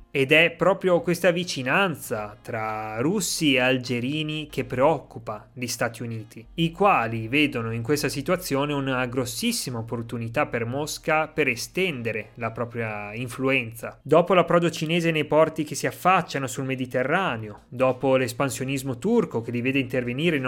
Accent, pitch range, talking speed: native, 120-170 Hz, 140 wpm